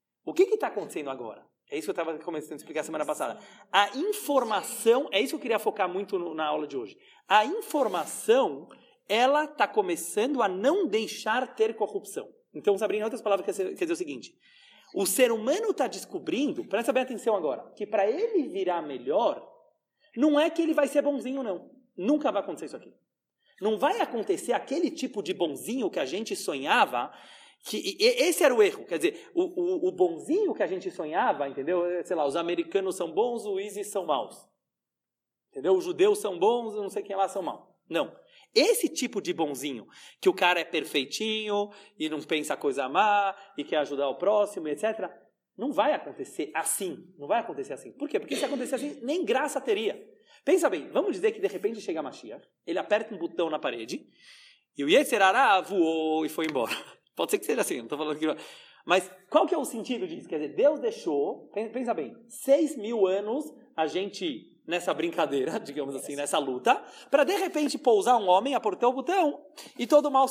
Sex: male